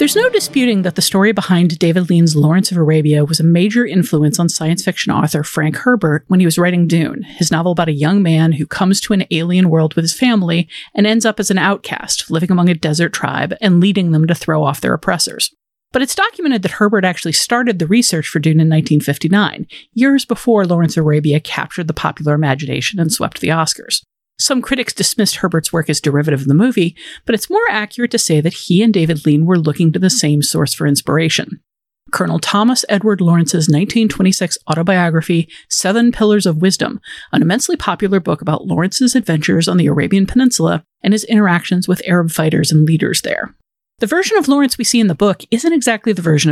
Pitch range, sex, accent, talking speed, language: 160-210 Hz, female, American, 205 wpm, English